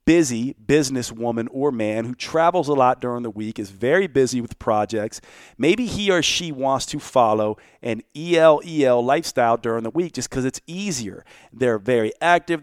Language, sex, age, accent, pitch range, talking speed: English, male, 40-59, American, 120-145 Hz, 185 wpm